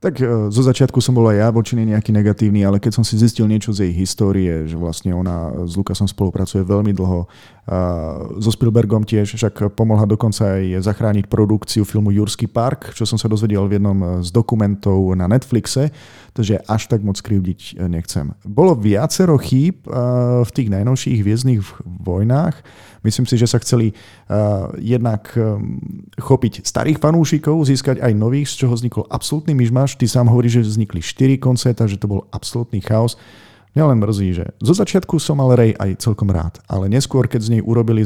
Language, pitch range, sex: Slovak, 100-125 Hz, male